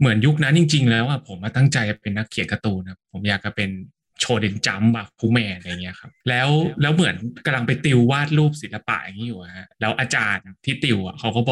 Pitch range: 110-140 Hz